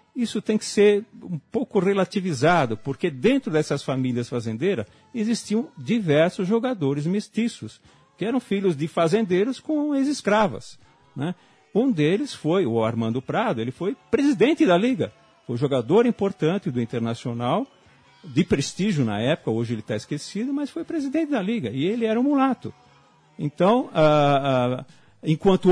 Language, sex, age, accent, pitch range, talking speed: Portuguese, male, 50-69, Brazilian, 135-215 Hz, 145 wpm